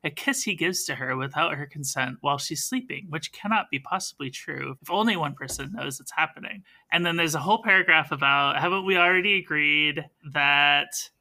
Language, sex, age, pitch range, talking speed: English, male, 30-49, 150-210 Hz, 195 wpm